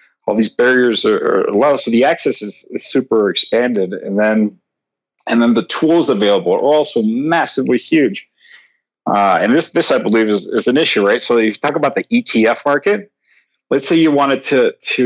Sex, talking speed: male, 190 wpm